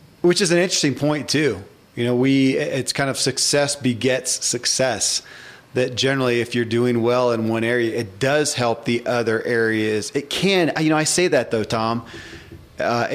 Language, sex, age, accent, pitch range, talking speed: English, male, 40-59, American, 115-135 Hz, 185 wpm